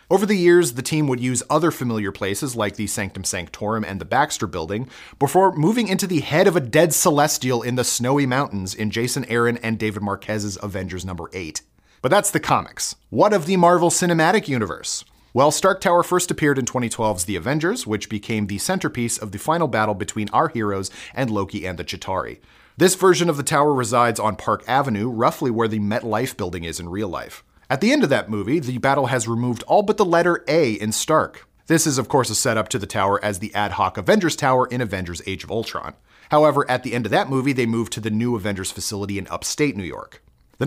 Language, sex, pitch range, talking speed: English, male, 105-150 Hz, 220 wpm